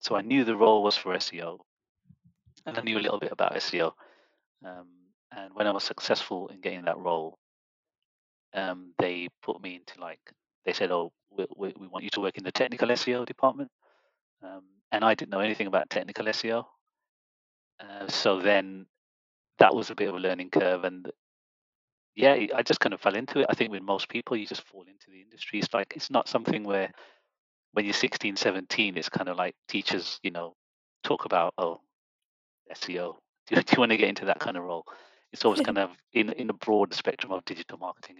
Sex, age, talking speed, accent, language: male, 30-49, 205 wpm, British, English